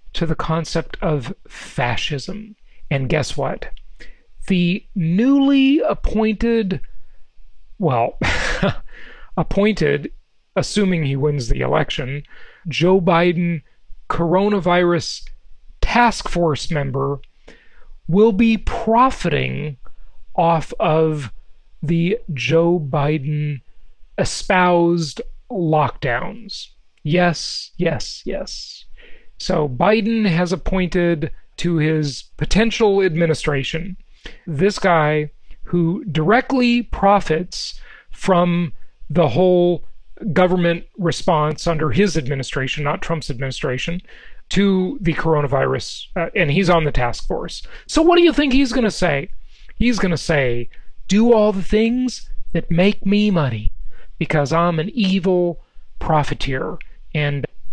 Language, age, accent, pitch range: English, 40-59, American, 150-195 Hz